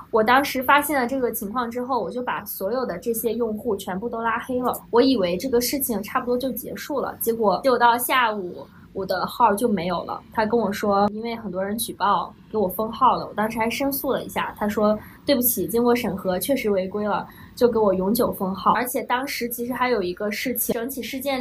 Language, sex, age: Chinese, female, 20-39